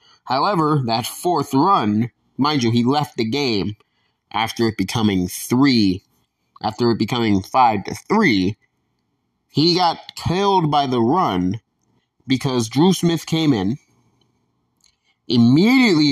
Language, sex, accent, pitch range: English, male, American, 115-170 Hz